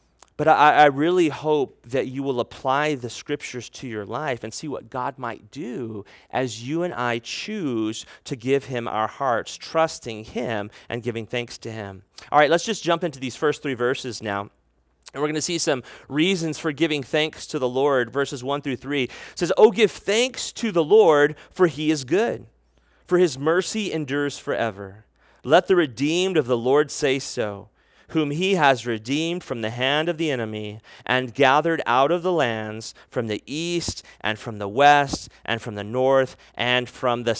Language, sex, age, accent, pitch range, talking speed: English, male, 30-49, American, 120-170 Hz, 190 wpm